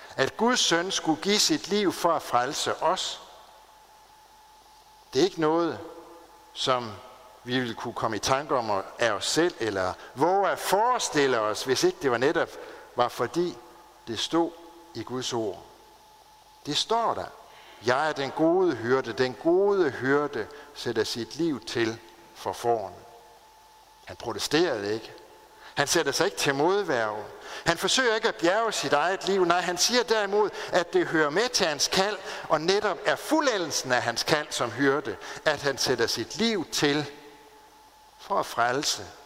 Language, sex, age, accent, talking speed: Danish, male, 60-79, native, 160 wpm